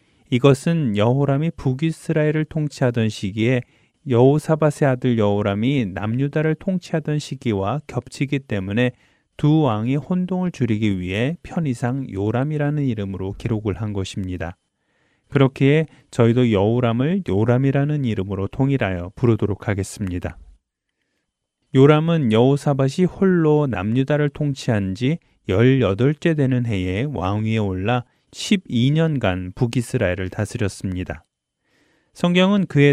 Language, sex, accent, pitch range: Korean, male, native, 105-145 Hz